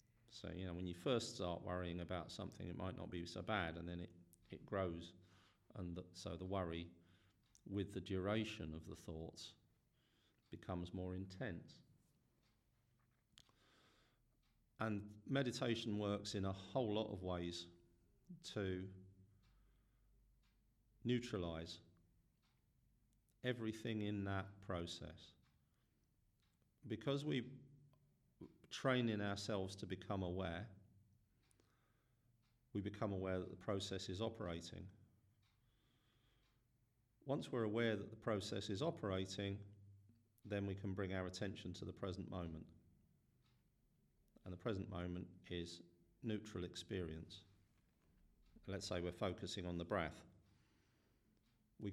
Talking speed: 115 wpm